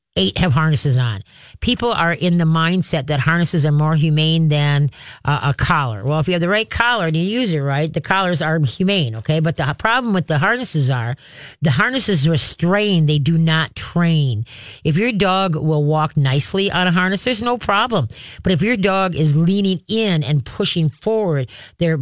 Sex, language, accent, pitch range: female, English, American, 145-190 Hz